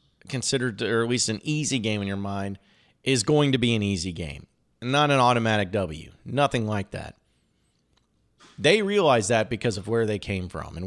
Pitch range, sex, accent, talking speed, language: 95-130 Hz, male, American, 190 wpm, English